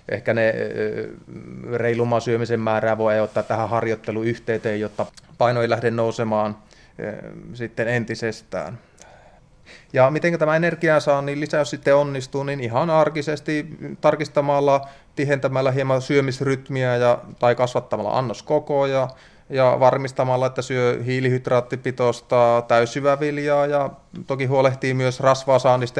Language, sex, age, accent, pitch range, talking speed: Finnish, male, 30-49, native, 110-130 Hz, 110 wpm